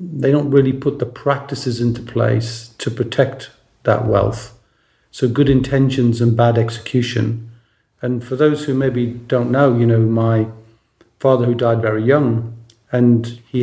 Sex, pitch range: male, 115-125 Hz